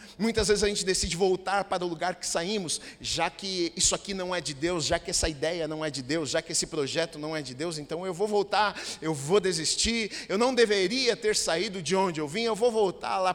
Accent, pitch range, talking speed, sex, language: Brazilian, 180-220 Hz, 245 wpm, male, Portuguese